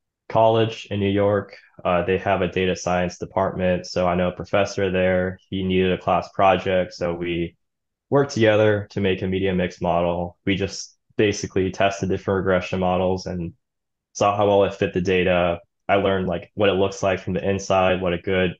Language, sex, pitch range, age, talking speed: English, male, 90-100 Hz, 20-39, 195 wpm